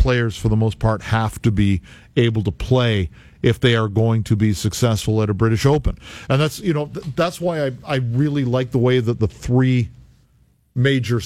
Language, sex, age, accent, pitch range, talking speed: English, male, 50-69, American, 110-135 Hz, 205 wpm